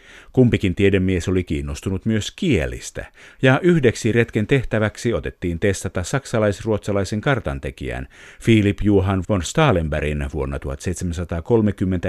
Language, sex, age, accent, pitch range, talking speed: Finnish, male, 50-69, native, 90-115 Hz, 100 wpm